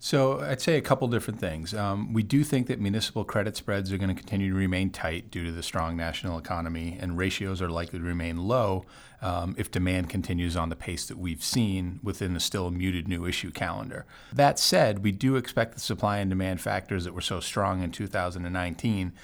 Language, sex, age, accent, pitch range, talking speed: English, male, 30-49, American, 90-105 Hz, 205 wpm